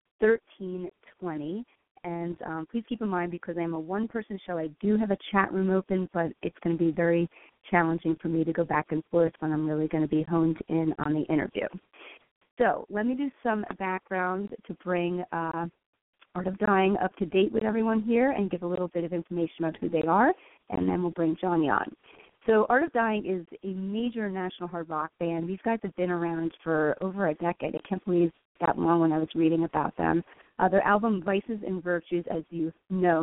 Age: 30-49